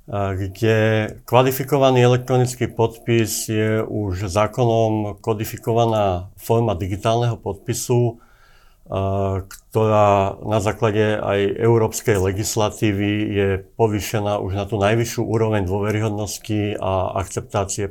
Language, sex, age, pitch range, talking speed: Slovak, male, 50-69, 95-115 Hz, 90 wpm